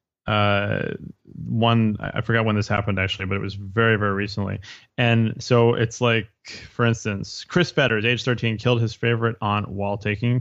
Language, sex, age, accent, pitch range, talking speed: English, male, 20-39, American, 100-125 Hz, 175 wpm